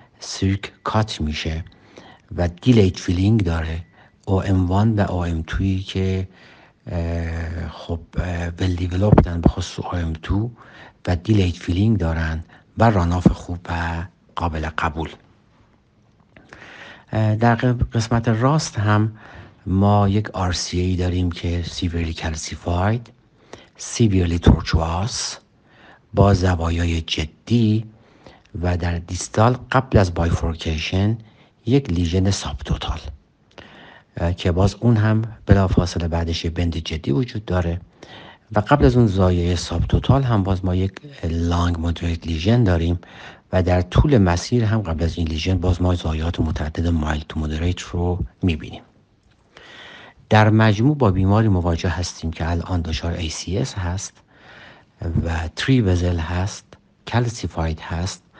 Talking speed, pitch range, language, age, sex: 115 wpm, 85-110 Hz, Persian, 60-79, male